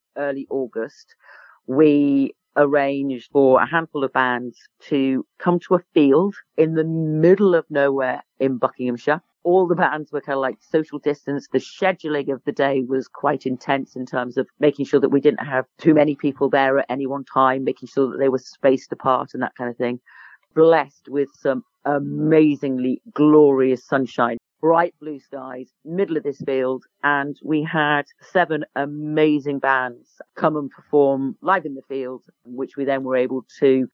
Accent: British